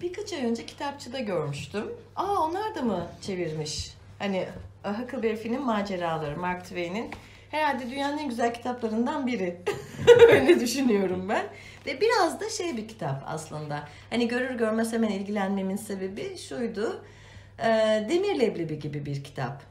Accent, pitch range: native, 160-250 Hz